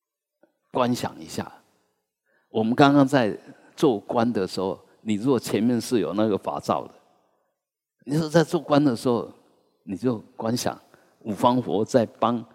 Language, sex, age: Chinese, male, 50-69